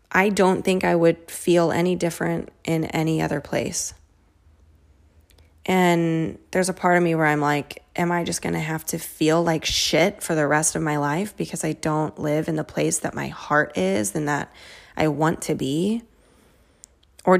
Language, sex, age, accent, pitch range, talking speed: English, female, 20-39, American, 155-190 Hz, 185 wpm